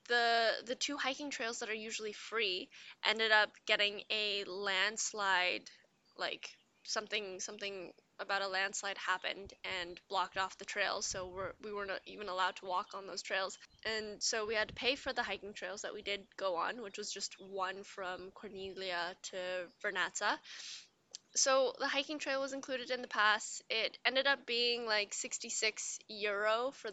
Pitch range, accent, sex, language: 200-255 Hz, American, female, English